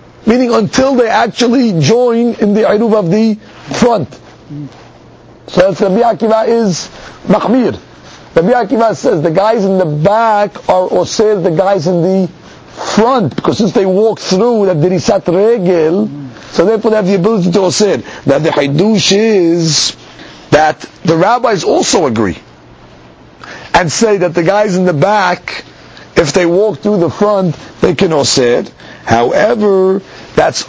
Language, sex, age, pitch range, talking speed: English, male, 50-69, 165-215 Hz, 145 wpm